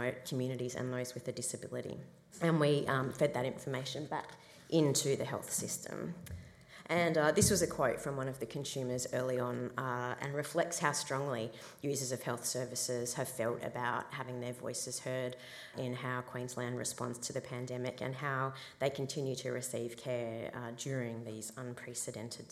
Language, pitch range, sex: English, 125-140 Hz, female